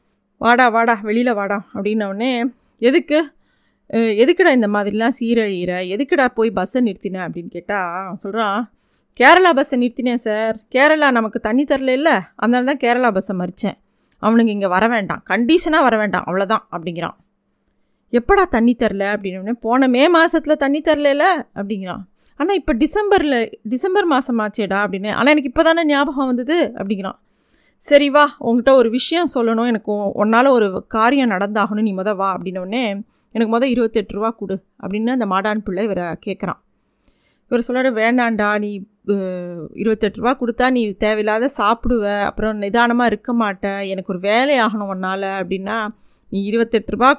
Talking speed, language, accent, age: 145 wpm, Tamil, native, 20-39